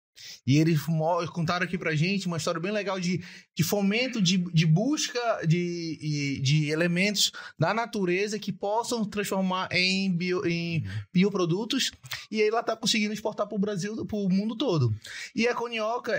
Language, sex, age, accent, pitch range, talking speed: Portuguese, male, 20-39, Brazilian, 155-210 Hz, 170 wpm